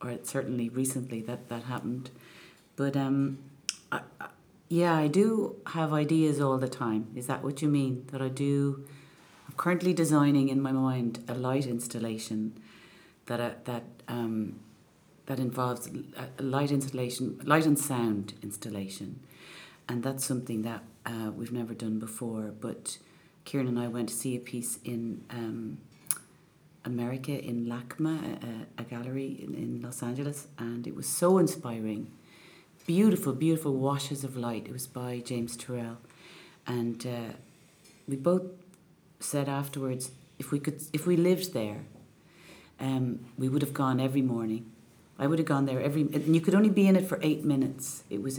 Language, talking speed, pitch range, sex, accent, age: English, 165 wpm, 120-145 Hz, female, Irish, 40-59